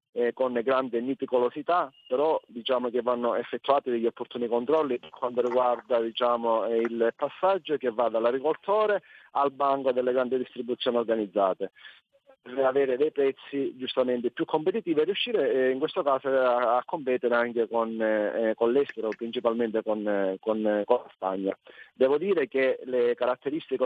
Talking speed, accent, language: 140 wpm, native, Italian